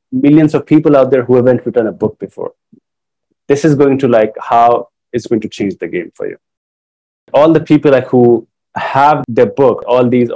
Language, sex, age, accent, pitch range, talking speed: English, male, 30-49, Indian, 115-140 Hz, 205 wpm